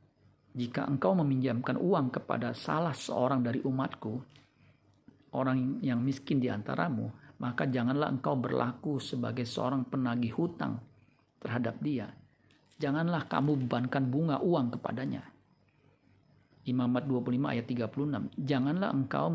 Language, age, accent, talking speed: Indonesian, 50-69, native, 110 wpm